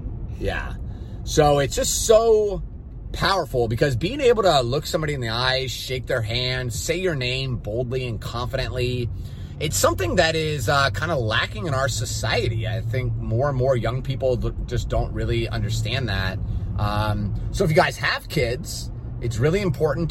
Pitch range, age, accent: 105-130 Hz, 30-49, American